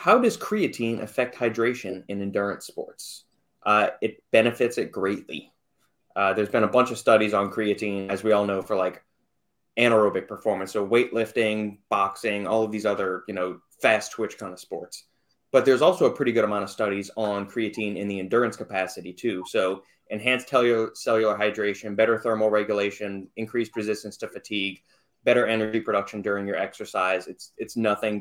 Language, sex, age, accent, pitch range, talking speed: English, male, 20-39, American, 100-115 Hz, 170 wpm